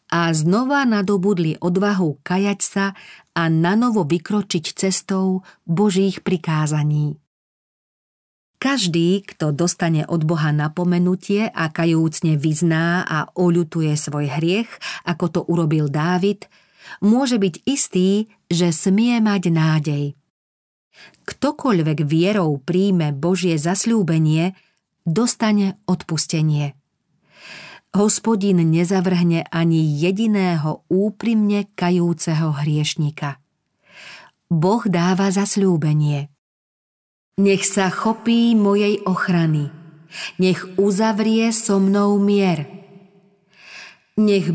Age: 40-59